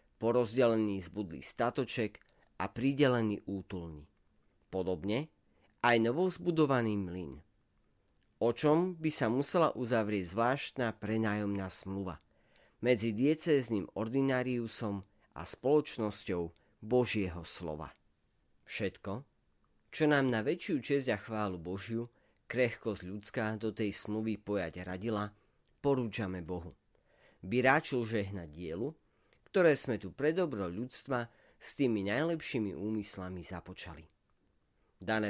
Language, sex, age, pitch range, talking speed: Slovak, male, 40-59, 95-125 Hz, 100 wpm